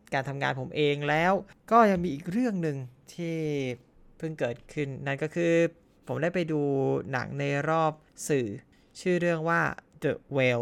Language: Thai